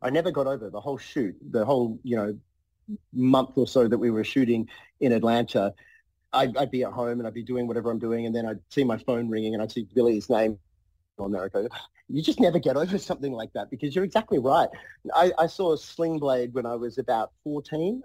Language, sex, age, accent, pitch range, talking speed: English, male, 40-59, Australian, 110-140 Hz, 230 wpm